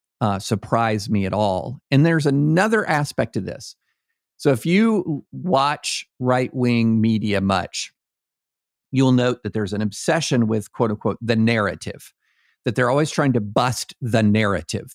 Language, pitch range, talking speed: English, 105-145 Hz, 145 wpm